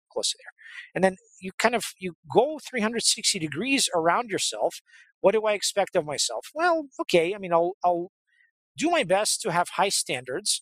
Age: 40-59